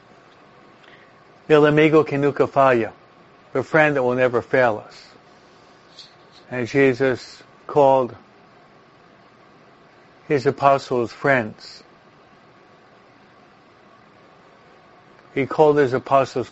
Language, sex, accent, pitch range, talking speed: English, male, American, 125-155 Hz, 80 wpm